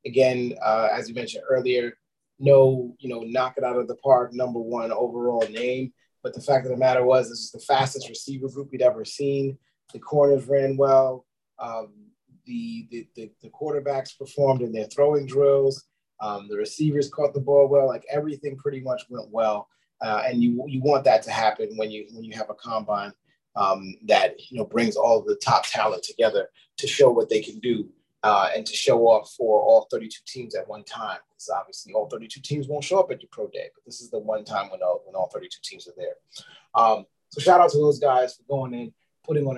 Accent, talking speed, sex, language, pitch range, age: American, 220 wpm, male, English, 120-150 Hz, 30-49